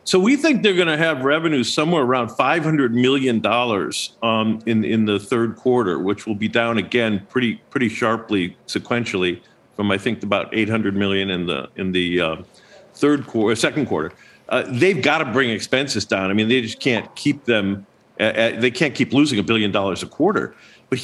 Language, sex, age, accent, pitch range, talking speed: English, male, 50-69, American, 115-170 Hz, 205 wpm